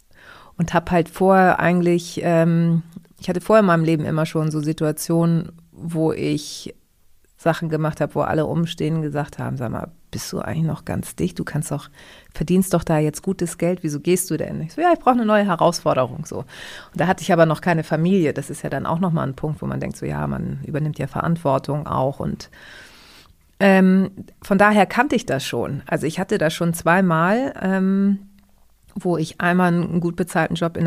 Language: German